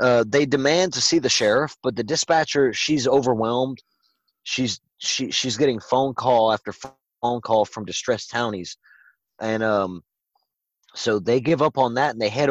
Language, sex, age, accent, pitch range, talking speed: English, male, 30-49, American, 105-125 Hz, 170 wpm